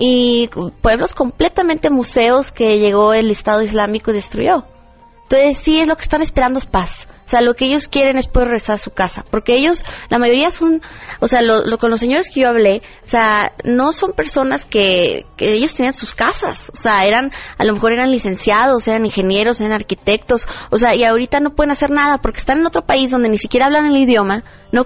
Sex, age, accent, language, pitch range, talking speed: female, 20-39, Mexican, Spanish, 210-260 Hz, 215 wpm